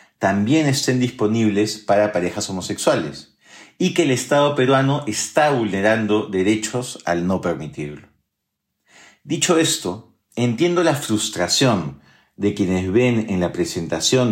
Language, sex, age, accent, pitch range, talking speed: Spanish, male, 40-59, Argentinian, 95-125 Hz, 115 wpm